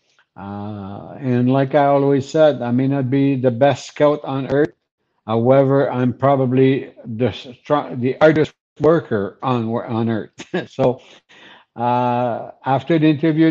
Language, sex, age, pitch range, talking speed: English, male, 60-79, 120-150 Hz, 140 wpm